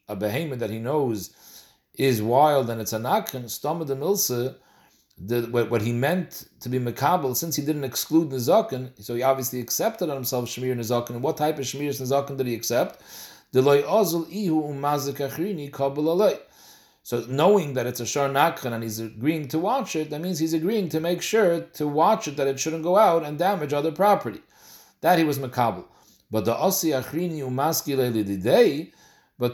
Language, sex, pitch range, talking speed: English, male, 130-160 Hz, 170 wpm